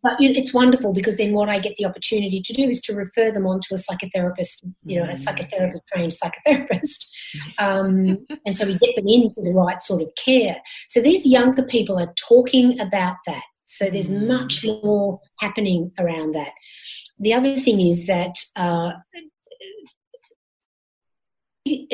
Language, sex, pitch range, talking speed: English, female, 180-235 Hz, 160 wpm